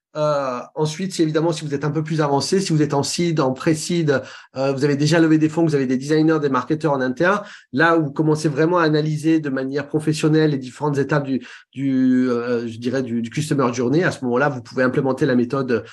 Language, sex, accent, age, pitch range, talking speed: English, male, French, 30-49, 130-160 Hz, 235 wpm